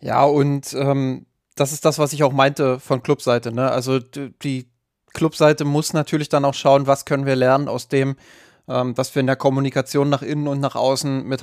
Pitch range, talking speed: 130-145 Hz, 205 wpm